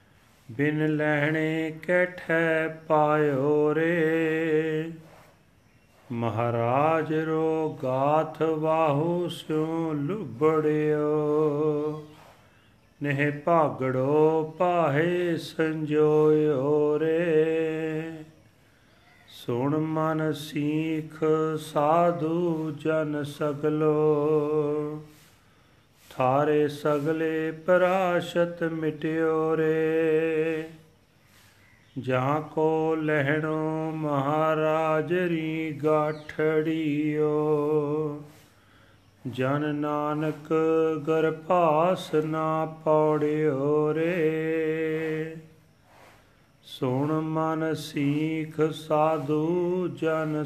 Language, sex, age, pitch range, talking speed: Punjabi, male, 40-59, 150-160 Hz, 50 wpm